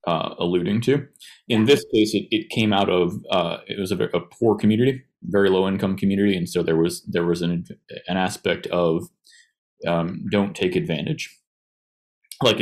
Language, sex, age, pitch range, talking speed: English, male, 30-49, 90-115 Hz, 175 wpm